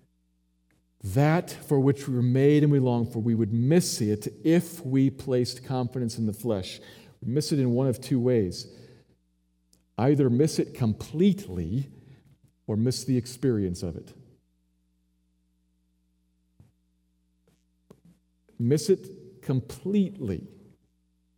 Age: 50-69